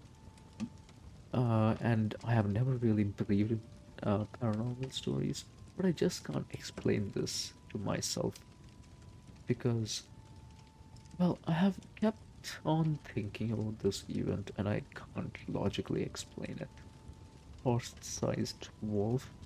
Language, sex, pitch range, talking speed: English, male, 100-125 Hz, 115 wpm